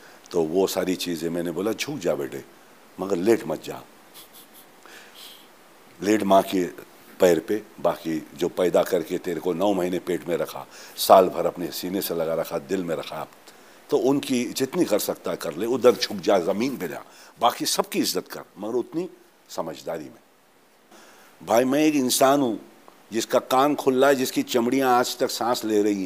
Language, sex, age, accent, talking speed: Hindi, male, 60-79, native, 175 wpm